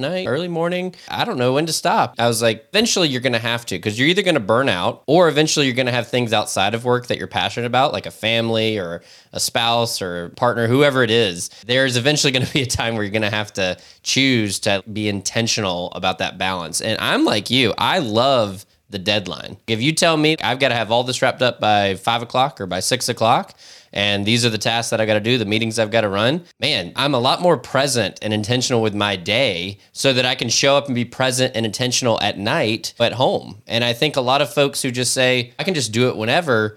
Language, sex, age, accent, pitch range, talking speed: English, male, 20-39, American, 105-130 Hz, 255 wpm